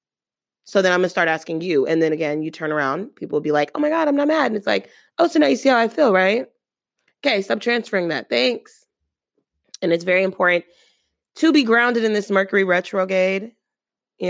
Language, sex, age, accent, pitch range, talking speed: English, female, 20-39, American, 165-210 Hz, 220 wpm